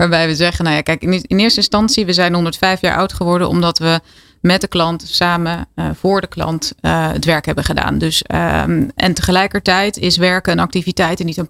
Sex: female